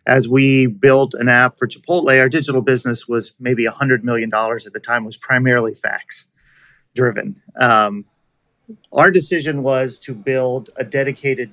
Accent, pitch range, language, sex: American, 115-135 Hz, English, male